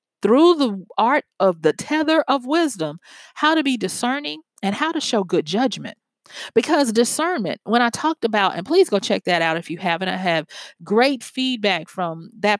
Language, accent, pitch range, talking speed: English, American, 190-270 Hz, 185 wpm